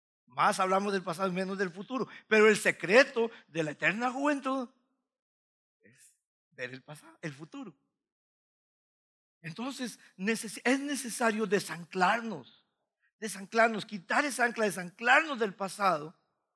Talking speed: 110 wpm